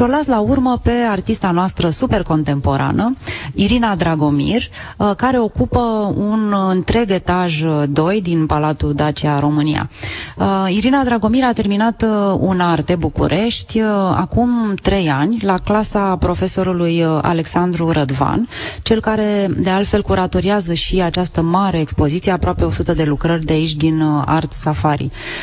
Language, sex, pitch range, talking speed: Romanian, female, 160-215 Hz, 125 wpm